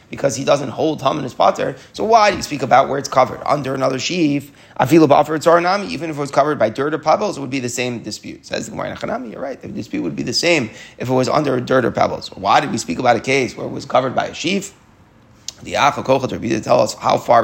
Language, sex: English, male